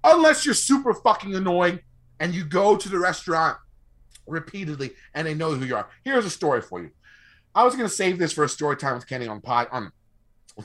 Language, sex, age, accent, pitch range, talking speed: English, male, 30-49, American, 130-195 Hz, 215 wpm